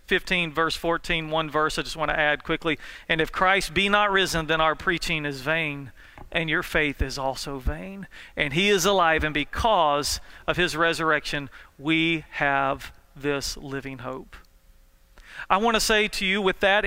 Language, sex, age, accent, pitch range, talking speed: English, male, 40-59, American, 160-200 Hz, 180 wpm